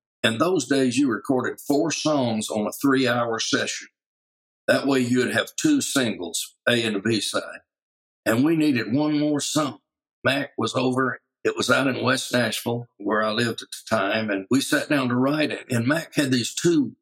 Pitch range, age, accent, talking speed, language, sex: 115-150 Hz, 60-79, American, 195 wpm, English, male